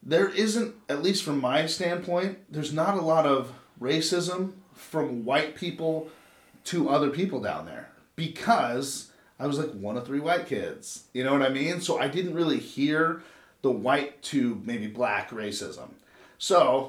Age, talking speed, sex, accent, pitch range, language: 30-49, 165 wpm, male, American, 130-175 Hz, English